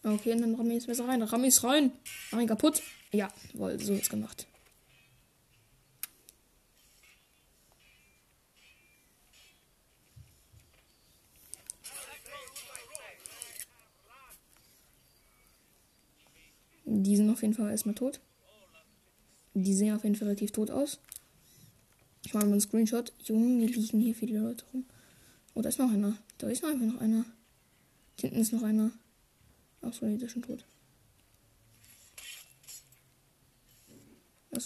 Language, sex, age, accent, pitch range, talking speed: German, female, 20-39, German, 200-240 Hz, 120 wpm